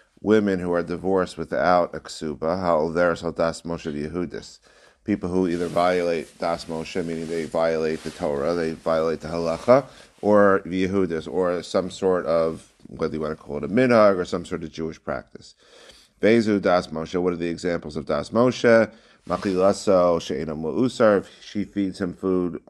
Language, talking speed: English, 165 wpm